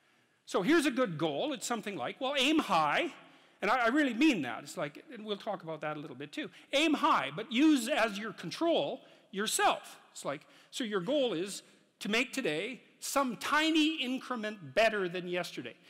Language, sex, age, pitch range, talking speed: English, male, 50-69, 165-255 Hz, 195 wpm